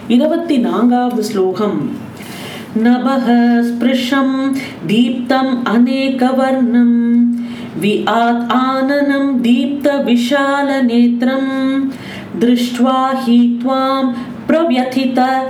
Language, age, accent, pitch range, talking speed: Tamil, 40-59, native, 235-275 Hz, 55 wpm